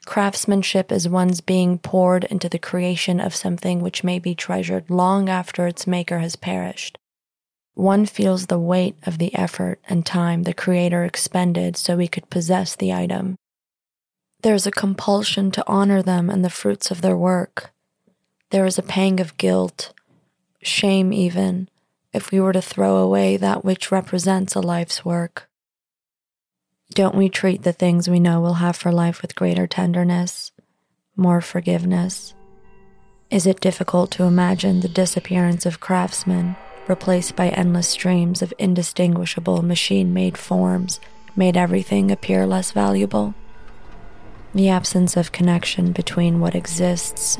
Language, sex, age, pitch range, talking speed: English, female, 20-39, 170-190 Hz, 145 wpm